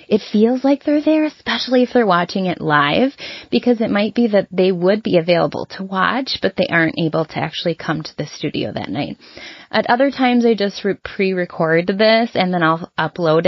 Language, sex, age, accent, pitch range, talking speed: English, female, 20-39, American, 170-220 Hz, 200 wpm